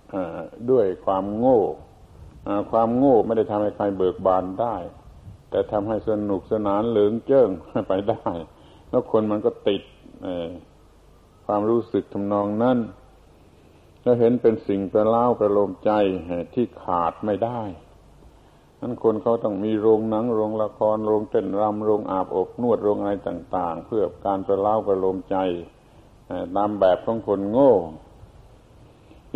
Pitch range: 100-115 Hz